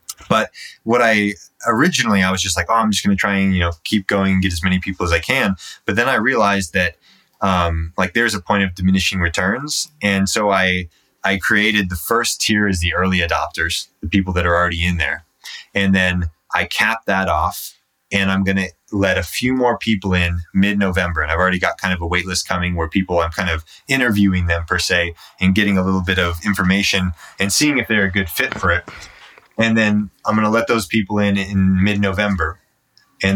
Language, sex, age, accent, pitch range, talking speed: English, male, 20-39, American, 90-105 Hz, 220 wpm